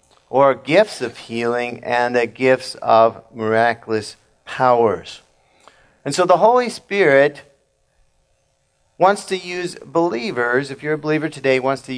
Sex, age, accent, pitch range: male, 50-69, American, 110-140 Hz